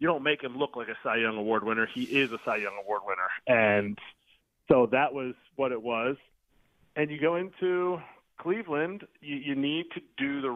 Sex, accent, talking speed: male, American, 205 wpm